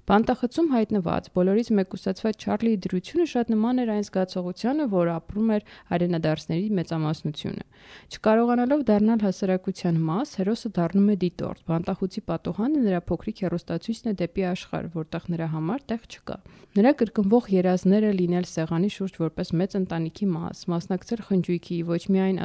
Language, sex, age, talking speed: English, female, 30-49, 55 wpm